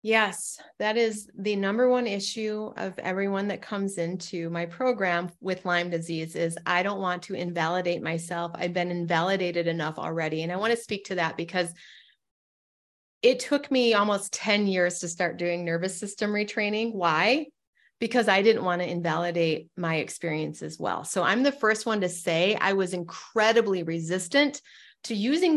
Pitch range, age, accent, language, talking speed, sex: 180-215 Hz, 30-49, American, English, 170 wpm, female